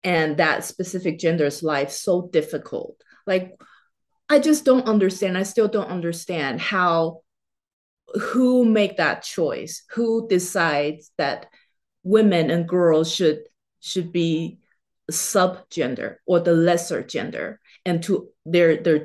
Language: English